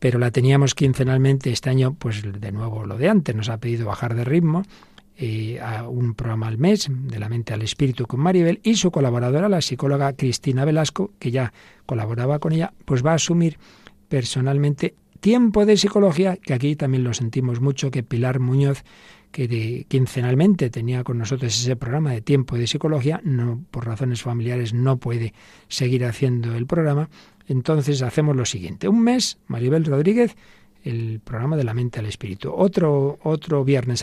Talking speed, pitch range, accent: 175 wpm, 120-160 Hz, Spanish